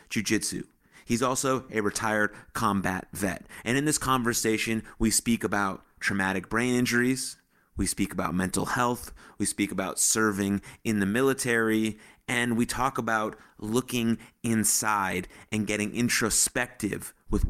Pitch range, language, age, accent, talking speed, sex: 100-120 Hz, English, 30-49, American, 135 wpm, male